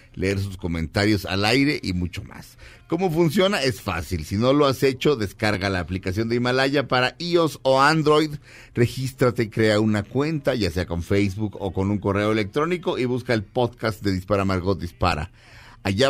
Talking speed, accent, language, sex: 180 wpm, Mexican, Spanish, male